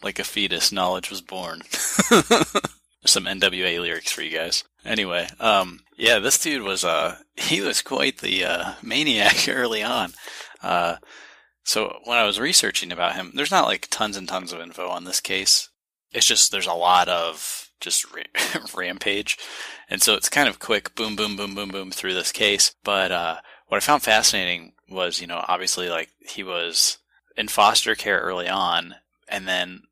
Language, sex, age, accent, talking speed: English, male, 20-39, American, 180 wpm